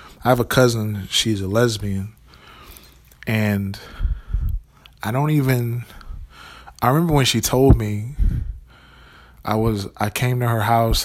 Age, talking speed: 20-39, 130 wpm